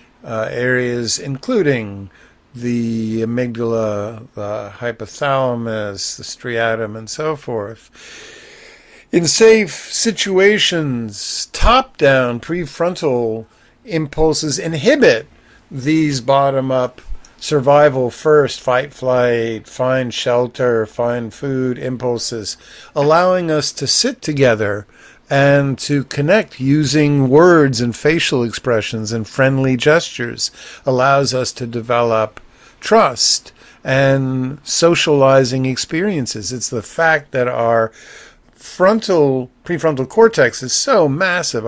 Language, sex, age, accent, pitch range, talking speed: English, male, 50-69, American, 120-155 Hz, 95 wpm